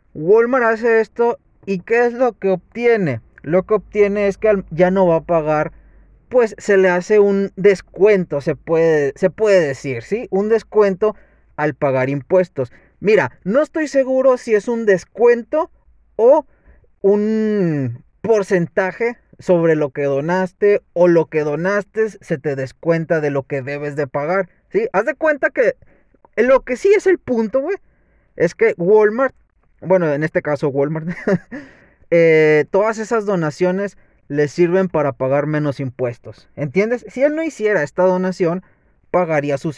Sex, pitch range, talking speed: male, 145-210 Hz, 155 wpm